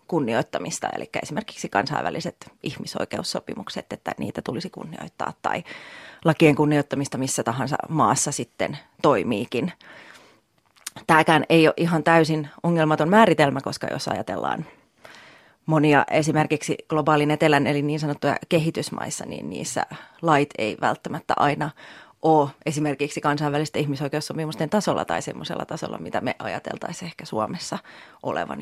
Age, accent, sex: 30-49, native, female